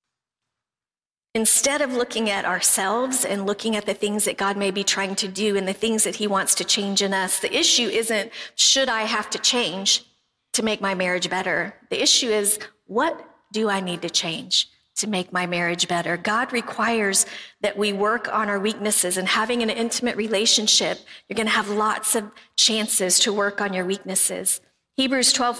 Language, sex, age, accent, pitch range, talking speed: English, female, 50-69, American, 195-240 Hz, 190 wpm